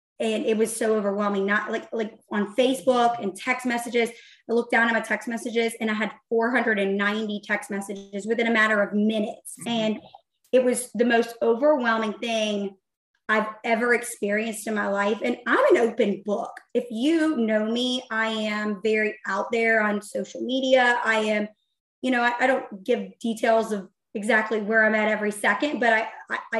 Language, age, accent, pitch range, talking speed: English, 20-39, American, 215-255 Hz, 180 wpm